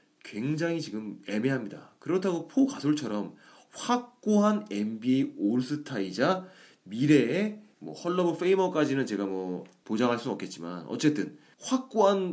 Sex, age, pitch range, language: male, 30-49, 120-200 Hz, Korean